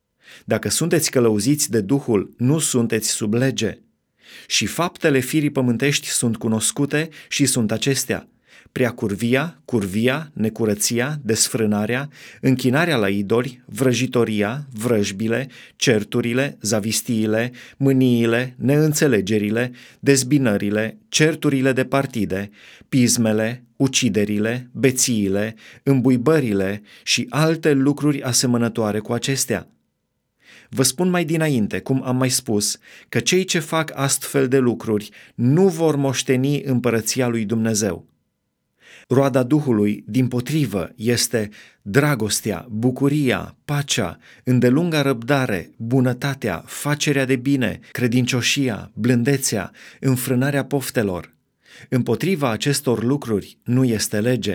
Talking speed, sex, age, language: 100 wpm, male, 30-49, Romanian